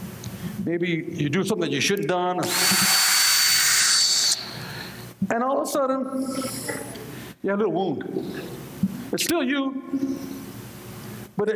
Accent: American